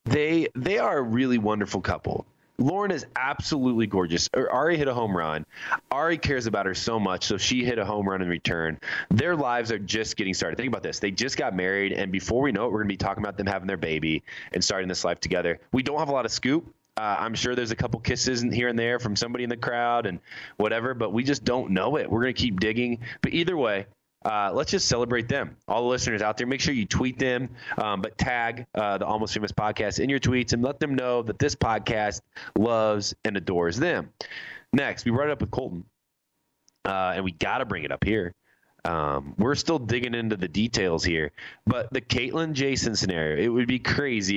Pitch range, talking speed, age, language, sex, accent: 100-125 Hz, 230 wpm, 20-39, English, male, American